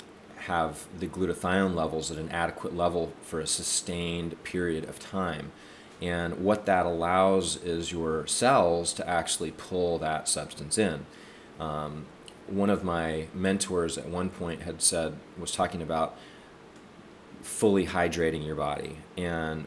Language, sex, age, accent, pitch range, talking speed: English, male, 30-49, American, 80-95 Hz, 135 wpm